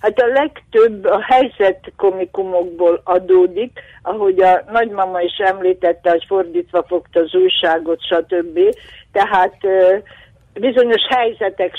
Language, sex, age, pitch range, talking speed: Hungarian, female, 60-79, 175-225 Hz, 105 wpm